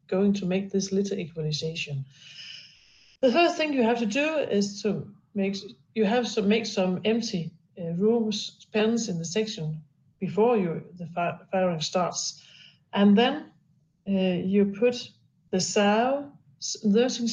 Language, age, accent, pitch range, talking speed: Danish, 60-79, native, 165-220 Hz, 140 wpm